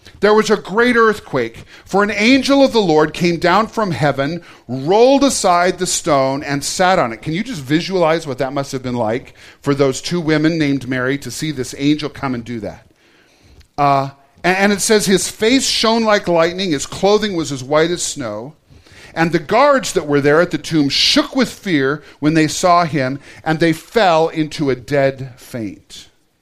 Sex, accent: male, American